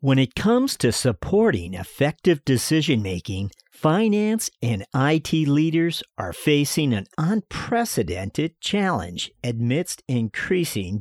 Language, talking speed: English, 105 wpm